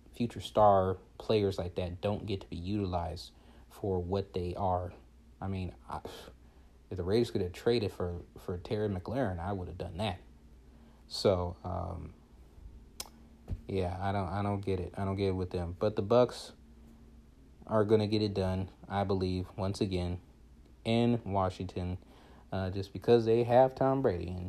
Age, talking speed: 30-49, 170 wpm